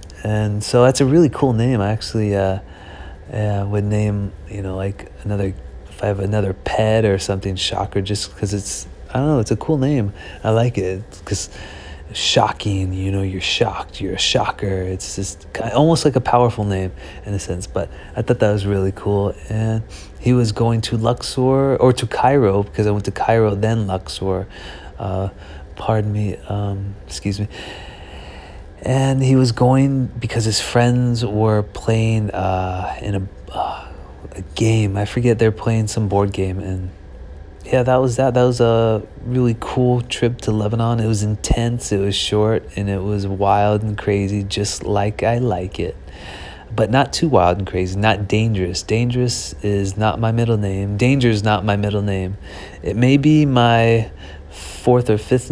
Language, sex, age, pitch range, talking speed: English, male, 30-49, 95-115 Hz, 175 wpm